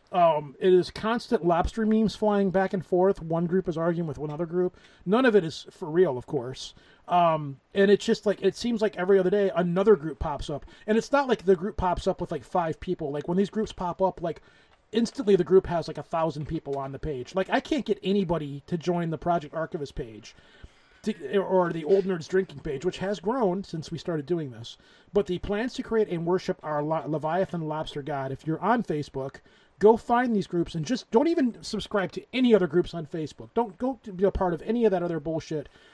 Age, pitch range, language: 30-49, 165-210 Hz, English